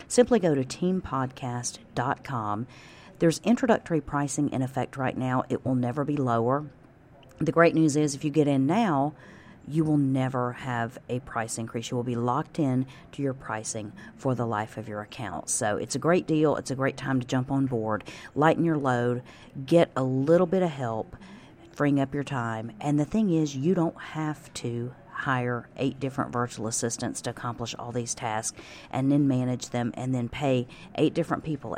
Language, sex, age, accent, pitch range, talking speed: English, female, 40-59, American, 120-150 Hz, 190 wpm